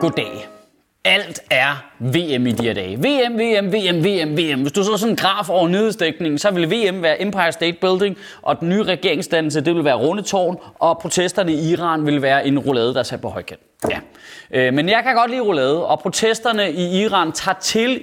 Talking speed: 205 wpm